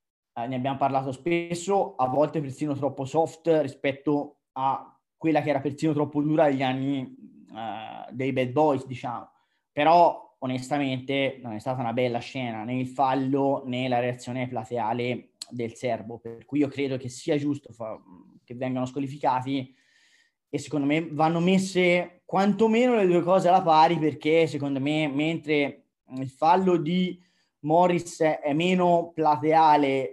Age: 20-39